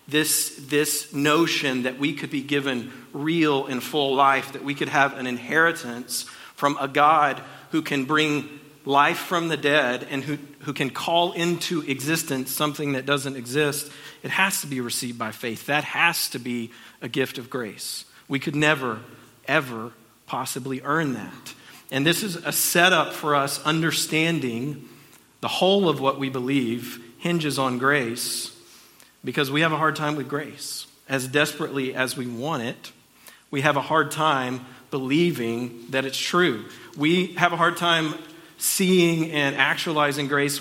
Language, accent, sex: English, American, male